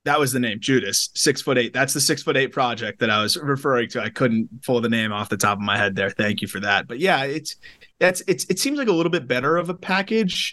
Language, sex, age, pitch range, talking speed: English, male, 20-39, 115-165 Hz, 285 wpm